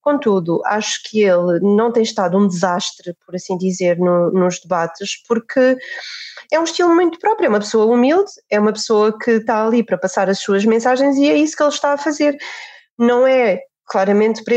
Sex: female